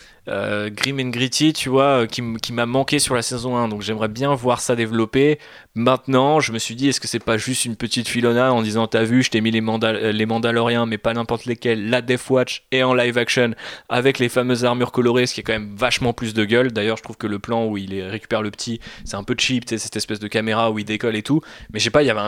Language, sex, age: French, male, 20-39